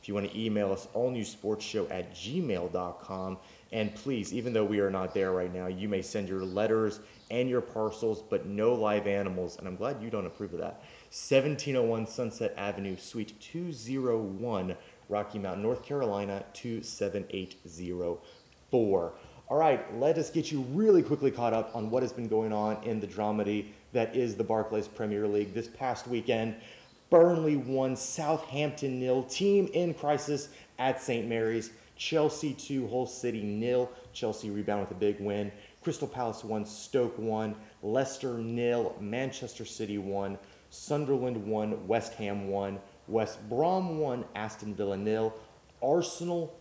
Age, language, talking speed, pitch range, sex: 30-49, English, 155 wpm, 105-125 Hz, male